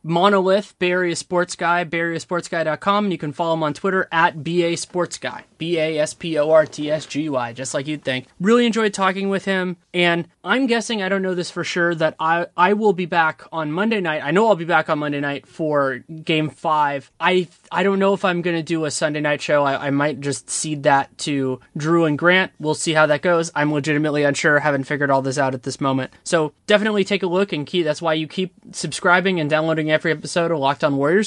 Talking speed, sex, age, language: 215 wpm, male, 20-39, English